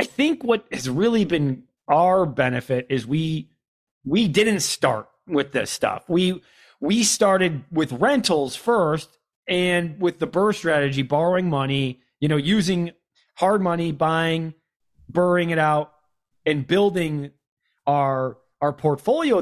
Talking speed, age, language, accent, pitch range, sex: 135 wpm, 30-49, English, American, 145-225 Hz, male